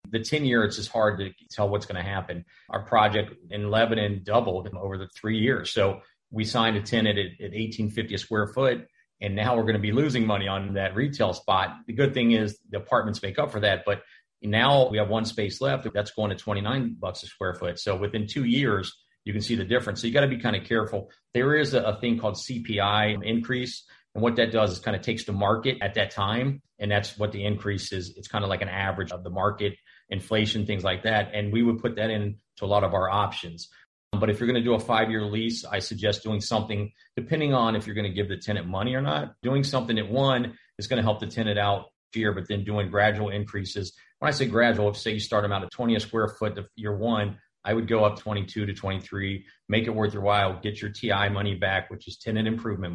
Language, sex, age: English, male, 30-49